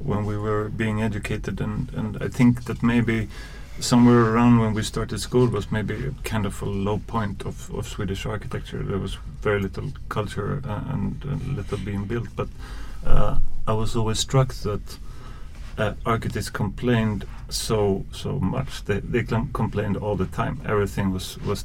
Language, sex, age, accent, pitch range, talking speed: English, male, 30-49, Swedish, 100-130 Hz, 170 wpm